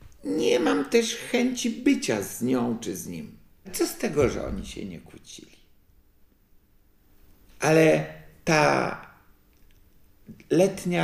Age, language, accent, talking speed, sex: 50-69, Polish, native, 115 wpm, male